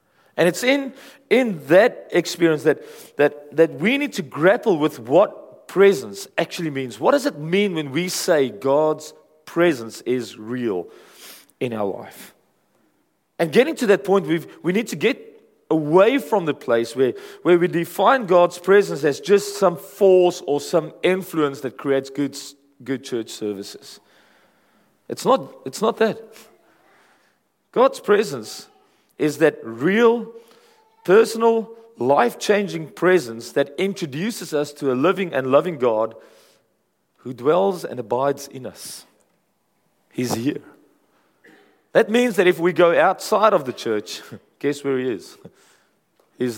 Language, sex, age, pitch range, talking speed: English, male, 40-59, 145-215 Hz, 140 wpm